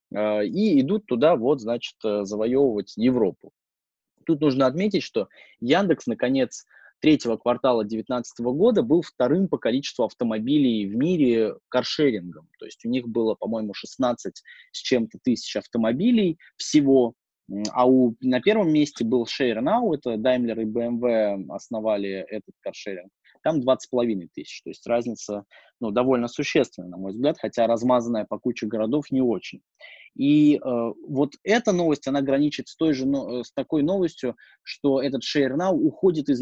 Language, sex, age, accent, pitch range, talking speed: Russian, male, 20-39, native, 110-155 Hz, 145 wpm